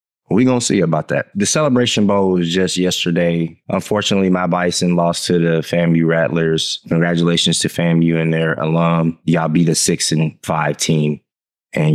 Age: 20-39